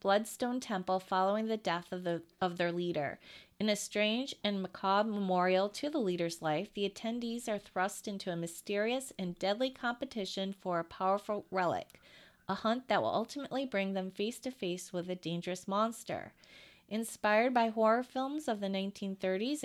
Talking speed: 170 wpm